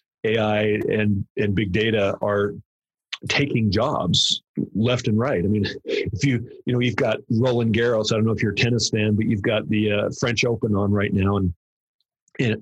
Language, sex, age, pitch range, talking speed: English, male, 40-59, 110-135 Hz, 195 wpm